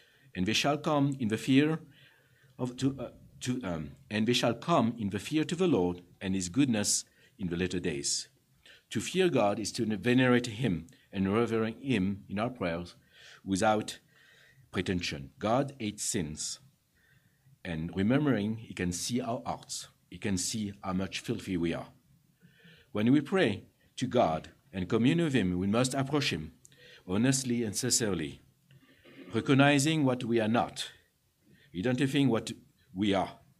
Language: English